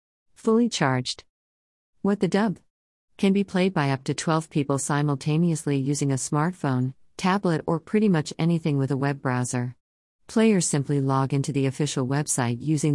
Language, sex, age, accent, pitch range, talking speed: English, female, 50-69, American, 130-165 Hz, 160 wpm